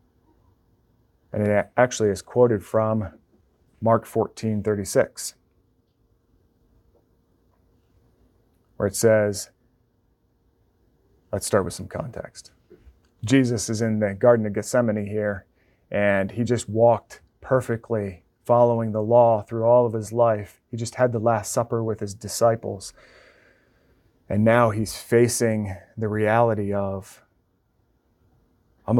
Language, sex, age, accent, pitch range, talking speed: English, male, 30-49, American, 100-120 Hz, 115 wpm